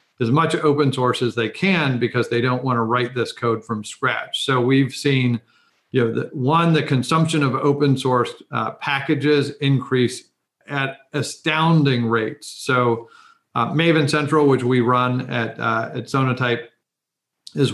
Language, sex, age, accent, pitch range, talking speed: English, male, 40-59, American, 120-145 Hz, 155 wpm